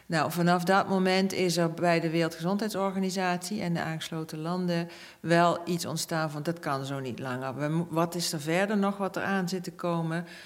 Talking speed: 185 wpm